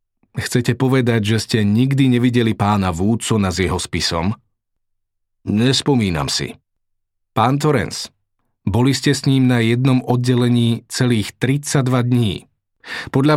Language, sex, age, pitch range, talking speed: Slovak, male, 40-59, 105-140 Hz, 115 wpm